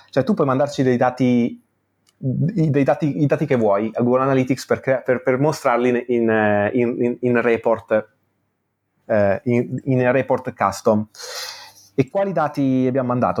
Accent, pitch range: native, 105-135 Hz